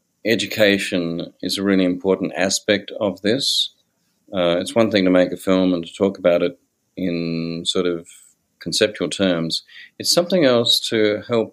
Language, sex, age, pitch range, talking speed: English, male, 40-59, 90-110 Hz, 160 wpm